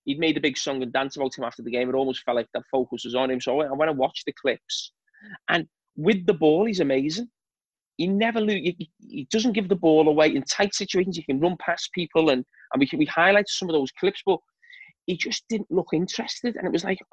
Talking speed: 250 wpm